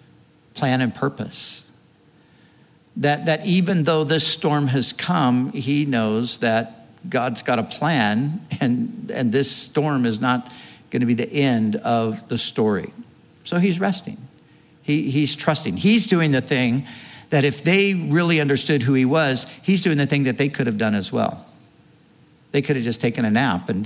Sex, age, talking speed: male, 60-79, 175 wpm